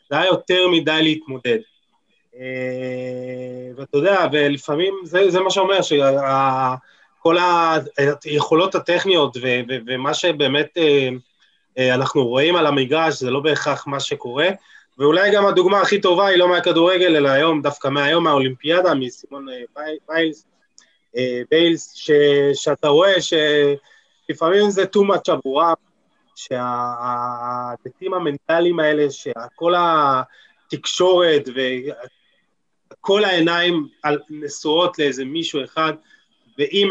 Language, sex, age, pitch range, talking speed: Hebrew, male, 20-39, 135-170 Hz, 110 wpm